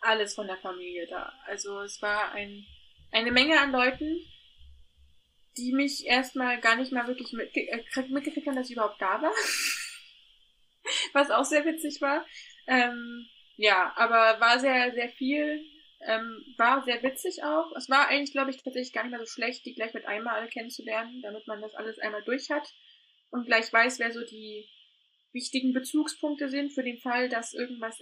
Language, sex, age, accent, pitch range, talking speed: German, female, 20-39, German, 210-265 Hz, 180 wpm